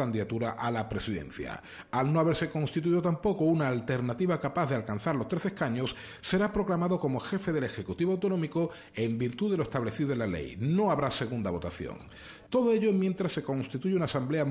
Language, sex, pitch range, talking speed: Spanish, male, 120-165 Hz, 180 wpm